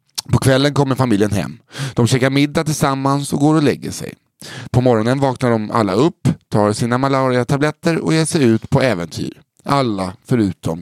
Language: English